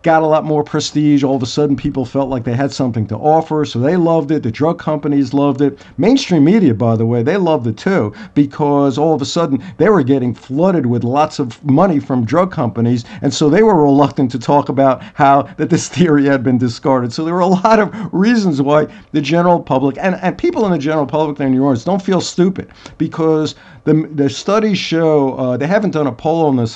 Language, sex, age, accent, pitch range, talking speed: English, male, 50-69, American, 135-170 Hz, 235 wpm